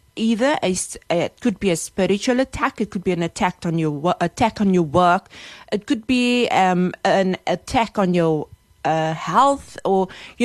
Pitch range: 180-235 Hz